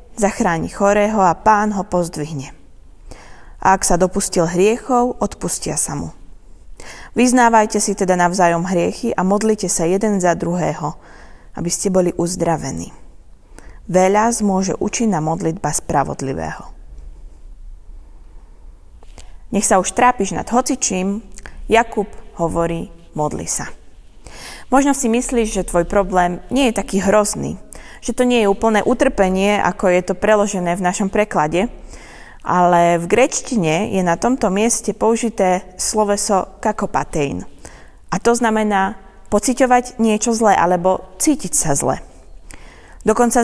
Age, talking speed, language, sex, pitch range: 20-39, 125 wpm, Slovak, female, 175-225 Hz